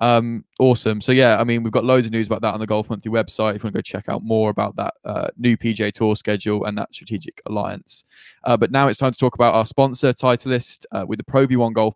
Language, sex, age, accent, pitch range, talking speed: English, male, 10-29, British, 105-125 Hz, 270 wpm